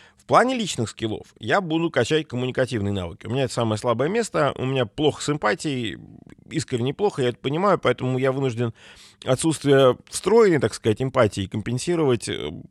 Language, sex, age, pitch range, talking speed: Russian, male, 20-39, 115-150 Hz, 160 wpm